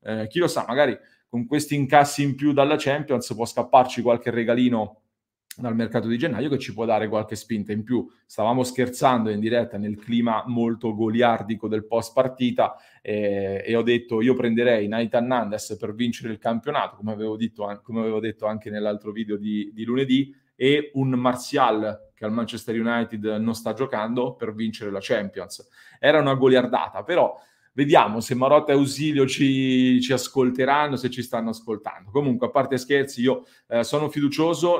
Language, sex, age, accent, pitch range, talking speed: Italian, male, 30-49, native, 115-130 Hz, 175 wpm